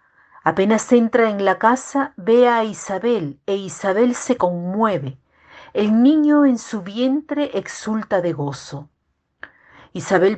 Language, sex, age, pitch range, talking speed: Spanish, female, 50-69, 170-235 Hz, 120 wpm